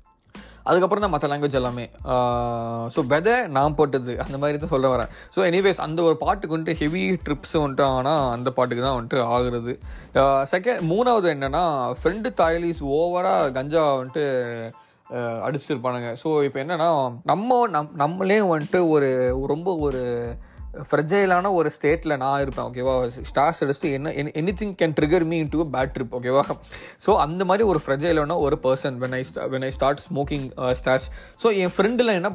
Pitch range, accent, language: 130-180 Hz, native, Tamil